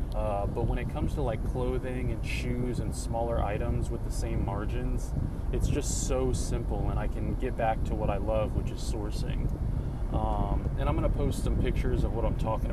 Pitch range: 110-125 Hz